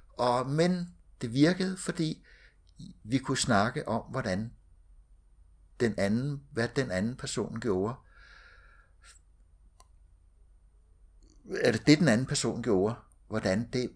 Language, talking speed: Danish, 110 wpm